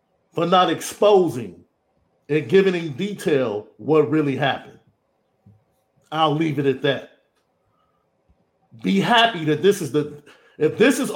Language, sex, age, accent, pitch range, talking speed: English, male, 40-59, American, 145-210 Hz, 130 wpm